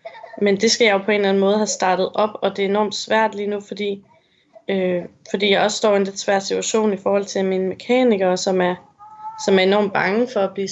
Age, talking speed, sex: 20-39, 250 wpm, female